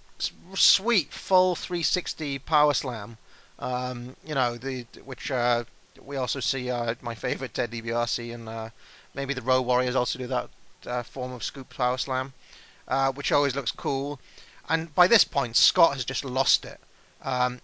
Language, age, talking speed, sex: English, 30-49, 165 wpm, male